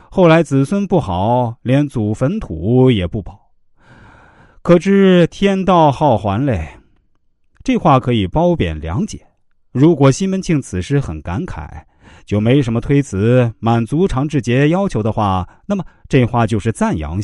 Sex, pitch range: male, 95-150 Hz